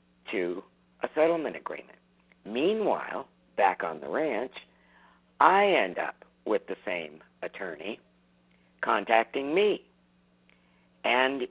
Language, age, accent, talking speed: English, 50-69, American, 100 wpm